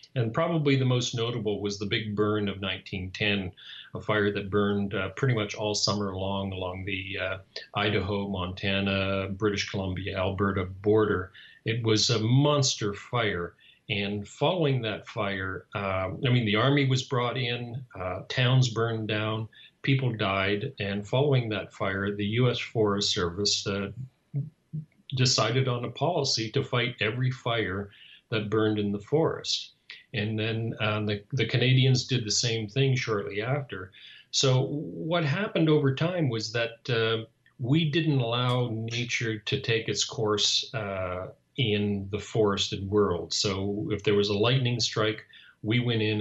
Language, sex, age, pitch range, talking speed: English, male, 40-59, 100-130 Hz, 155 wpm